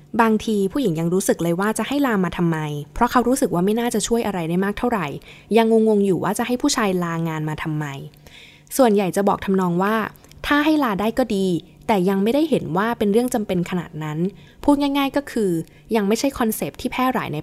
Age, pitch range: 10-29, 175-230 Hz